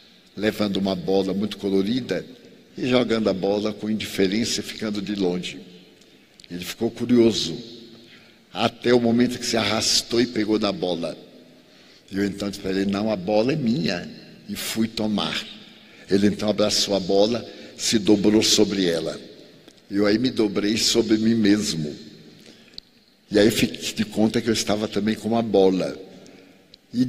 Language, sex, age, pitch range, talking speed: Portuguese, male, 60-79, 100-120 Hz, 155 wpm